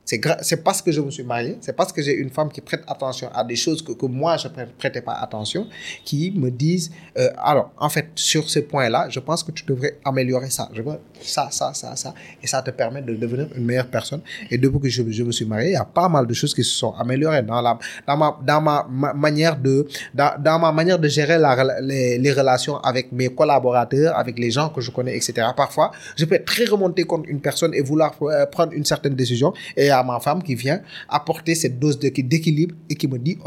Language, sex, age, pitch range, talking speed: French, male, 30-49, 130-165 Hz, 250 wpm